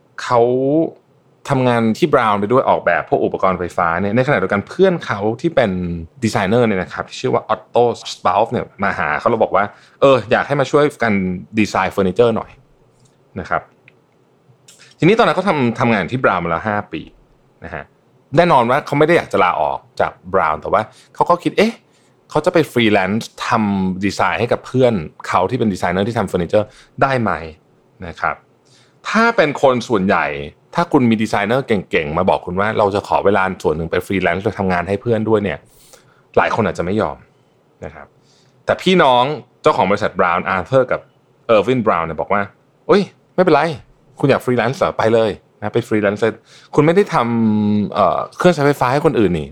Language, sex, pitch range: Thai, male, 95-135 Hz